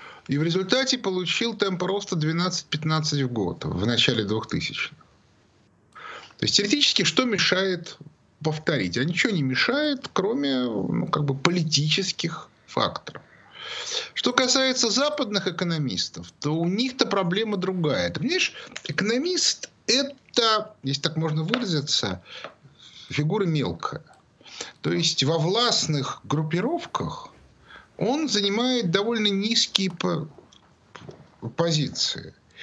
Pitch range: 155-230 Hz